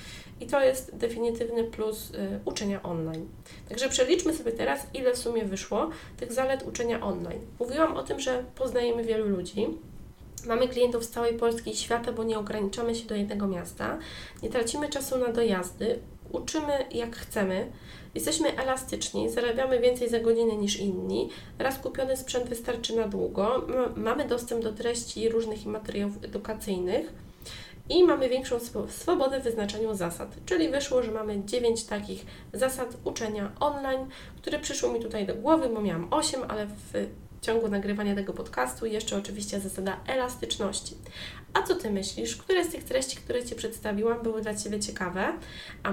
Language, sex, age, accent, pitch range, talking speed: Polish, female, 20-39, native, 210-260 Hz, 160 wpm